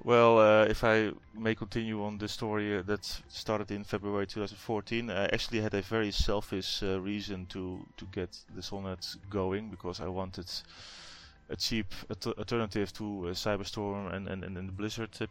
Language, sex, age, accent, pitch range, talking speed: English, male, 20-39, Dutch, 95-110 Hz, 170 wpm